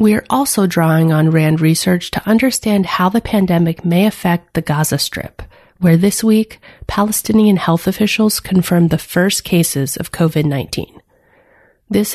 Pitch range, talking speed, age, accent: 165-205 Hz, 150 wpm, 30-49, American